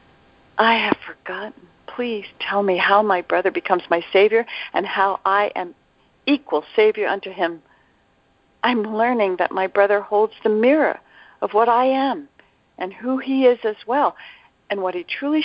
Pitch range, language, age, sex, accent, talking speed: 185-245 Hz, English, 60-79, female, American, 165 wpm